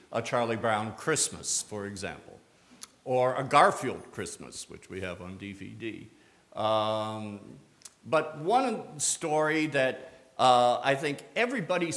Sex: male